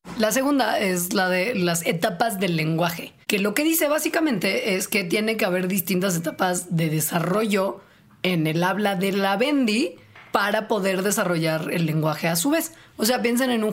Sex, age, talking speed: female, 30-49, 185 wpm